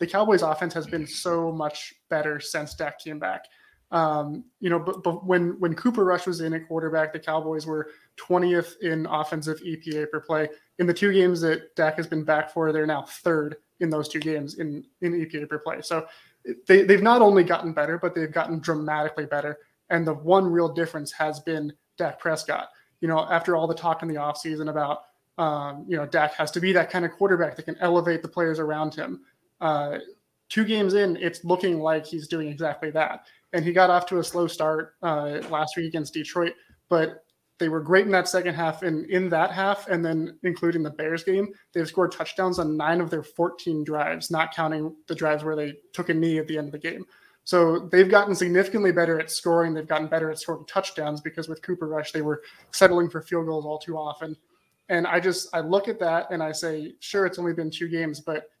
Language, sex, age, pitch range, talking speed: English, male, 20-39, 155-175 Hz, 220 wpm